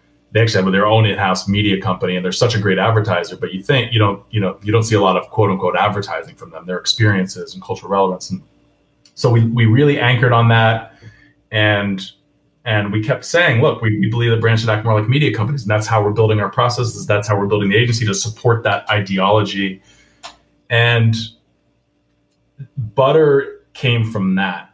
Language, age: English, 30-49